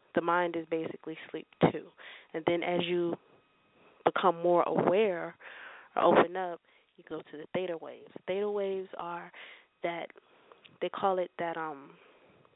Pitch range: 170-200 Hz